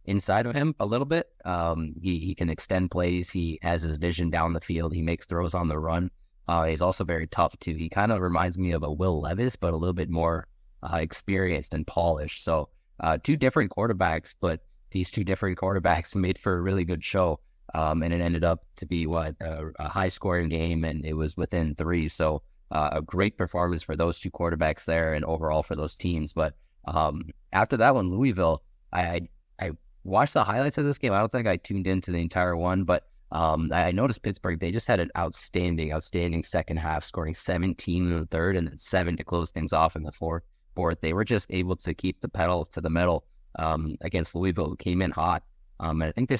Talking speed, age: 220 wpm, 20-39